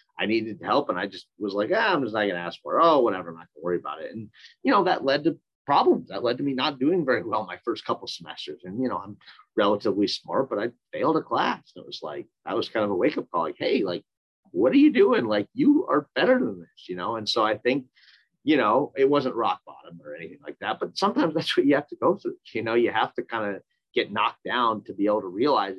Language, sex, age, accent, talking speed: English, male, 30-49, American, 285 wpm